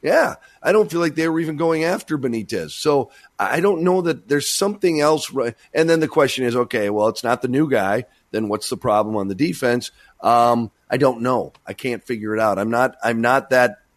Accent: American